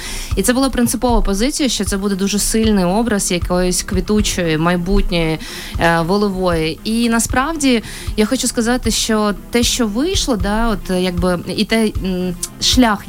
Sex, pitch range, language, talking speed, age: female, 200-235 Hz, Ukrainian, 140 wpm, 20-39